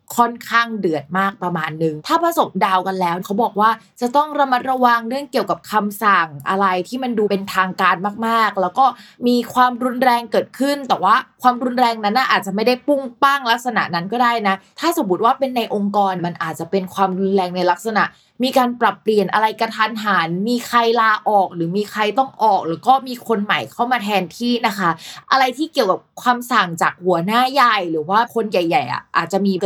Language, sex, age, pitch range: Thai, female, 20-39, 190-245 Hz